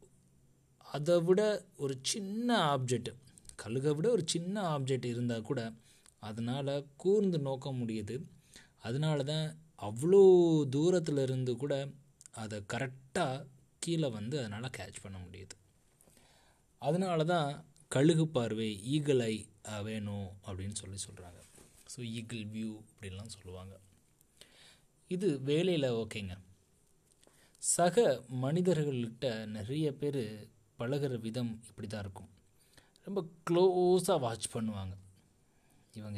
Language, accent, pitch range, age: Tamil, native, 105-145 Hz, 20-39